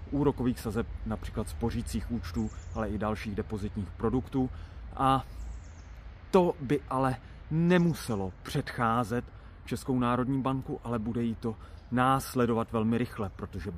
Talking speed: 120 wpm